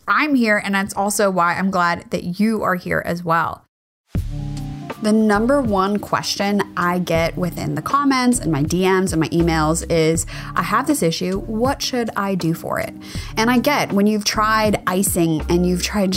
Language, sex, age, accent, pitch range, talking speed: English, female, 20-39, American, 170-225 Hz, 185 wpm